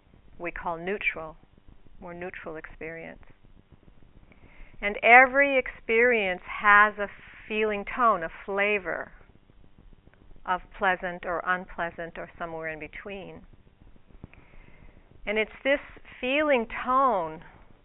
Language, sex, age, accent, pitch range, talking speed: English, female, 50-69, American, 160-205 Hz, 95 wpm